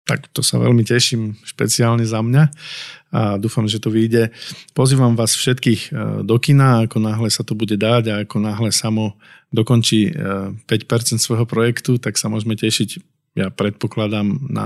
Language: Slovak